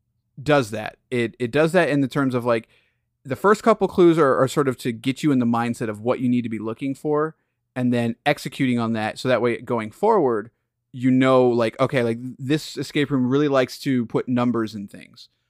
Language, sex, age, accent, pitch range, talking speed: English, male, 30-49, American, 120-145 Hz, 225 wpm